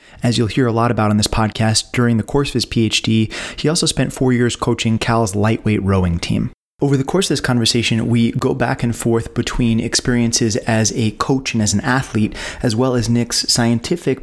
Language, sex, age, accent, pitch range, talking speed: English, male, 30-49, American, 105-120 Hz, 210 wpm